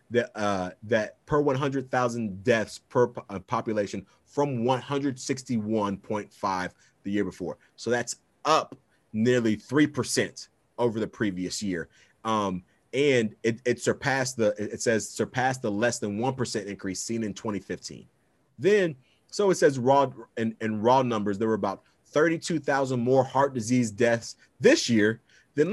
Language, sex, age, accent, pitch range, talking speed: English, male, 30-49, American, 100-135 Hz, 145 wpm